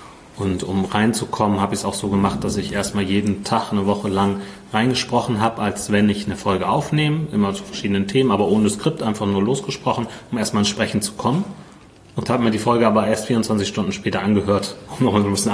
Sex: male